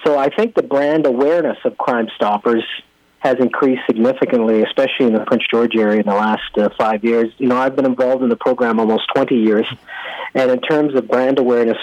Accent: American